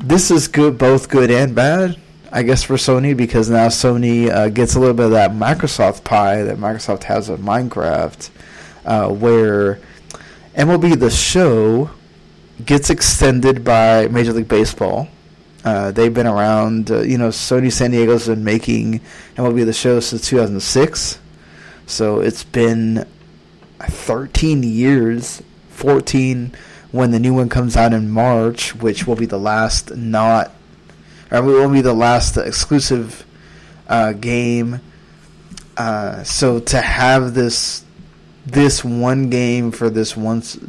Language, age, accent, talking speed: English, 20-39, American, 140 wpm